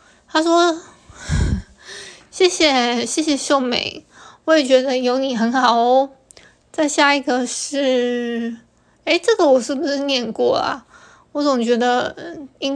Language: Chinese